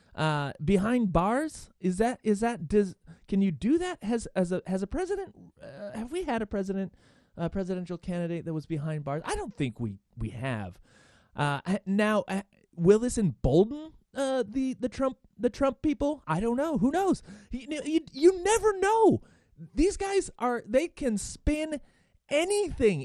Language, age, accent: English, 30-49, American